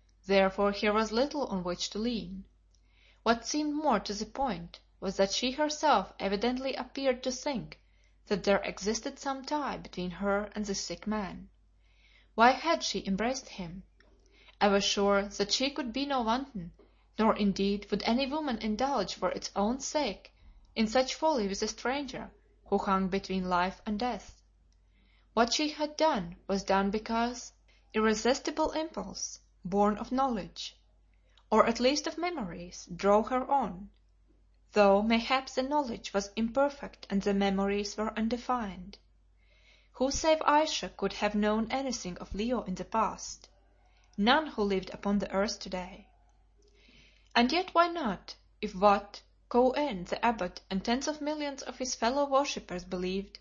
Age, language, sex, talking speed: 20-39, English, female, 155 wpm